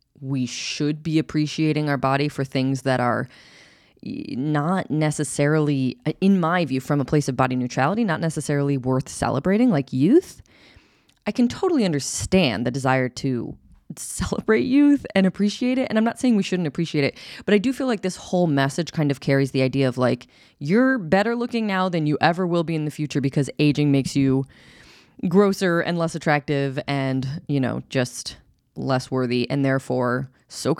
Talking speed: 175 wpm